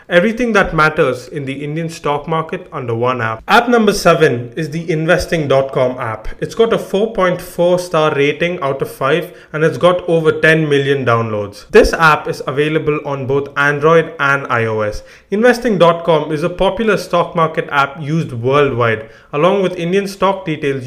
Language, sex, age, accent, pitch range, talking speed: English, male, 30-49, Indian, 145-180 Hz, 165 wpm